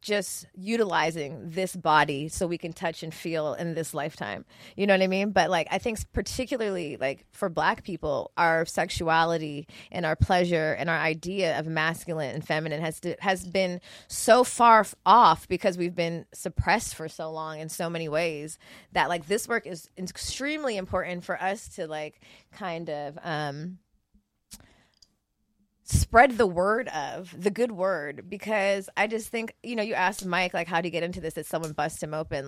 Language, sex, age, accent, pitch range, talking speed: English, female, 20-39, American, 165-230 Hz, 180 wpm